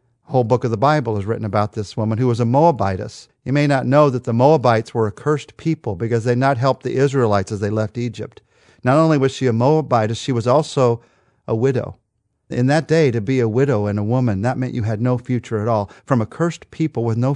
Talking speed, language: 240 wpm, English